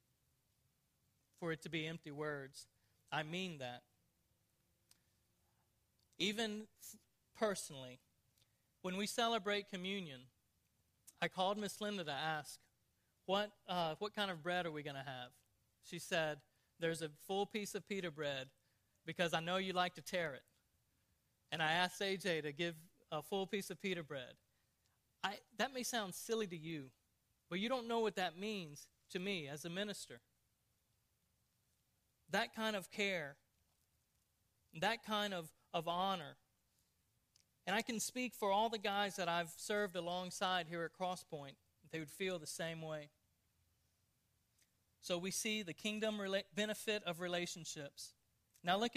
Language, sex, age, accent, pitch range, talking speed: English, male, 40-59, American, 130-195 Hz, 150 wpm